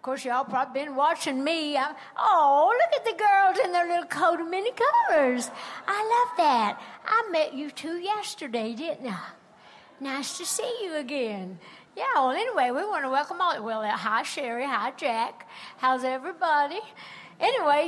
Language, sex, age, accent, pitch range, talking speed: English, female, 60-79, American, 240-315 Hz, 170 wpm